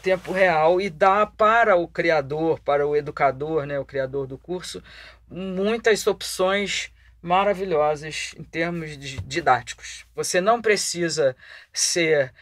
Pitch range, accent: 165-210 Hz, Brazilian